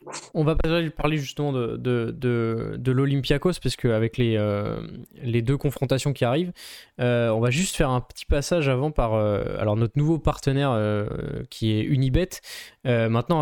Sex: male